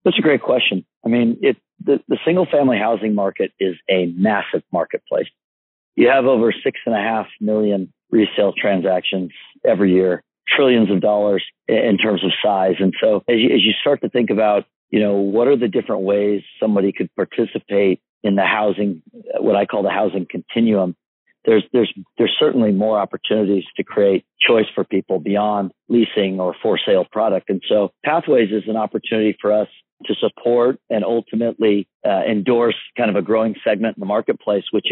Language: English